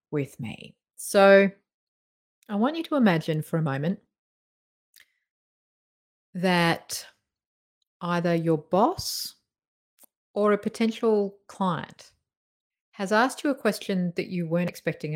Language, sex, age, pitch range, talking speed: English, female, 40-59, 170-205 Hz, 110 wpm